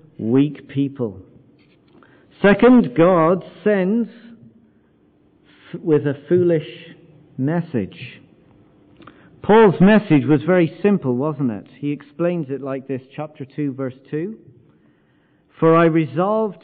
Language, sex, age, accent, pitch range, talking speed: English, male, 50-69, British, 135-190 Hz, 100 wpm